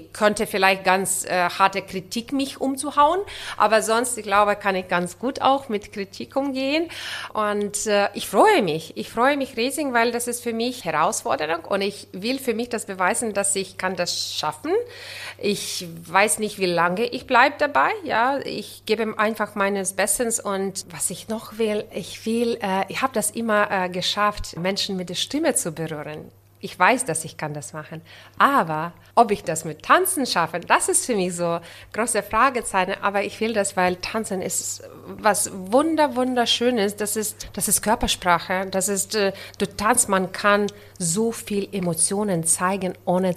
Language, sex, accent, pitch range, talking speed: German, female, German, 180-230 Hz, 180 wpm